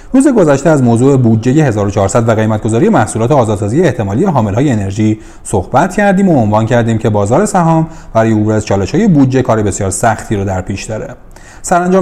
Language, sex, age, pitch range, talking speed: Persian, male, 30-49, 110-155 Hz, 170 wpm